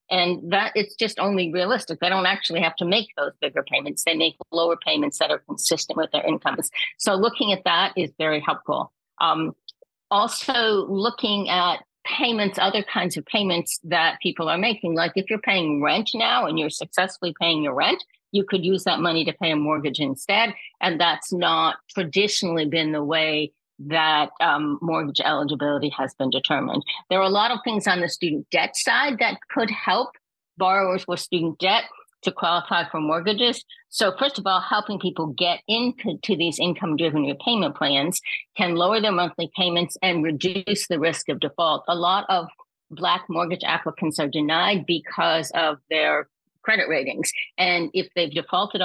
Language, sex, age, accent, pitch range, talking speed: English, female, 50-69, American, 160-205 Hz, 180 wpm